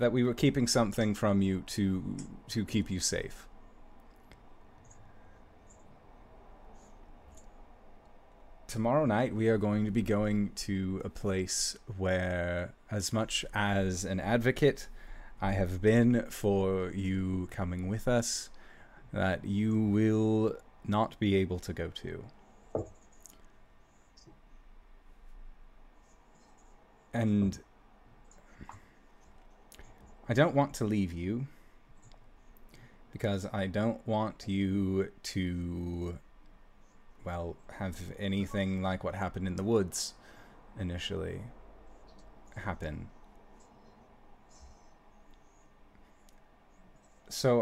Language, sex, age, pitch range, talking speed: English, male, 30-49, 95-110 Hz, 90 wpm